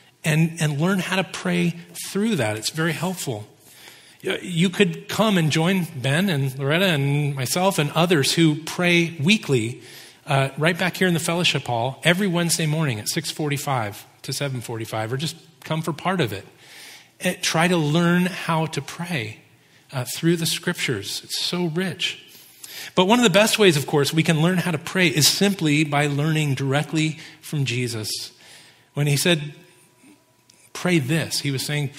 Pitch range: 135-175 Hz